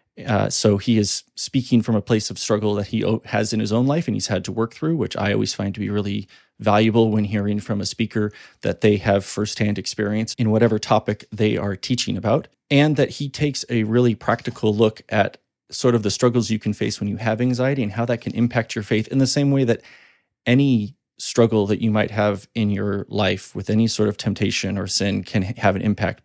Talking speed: 230 wpm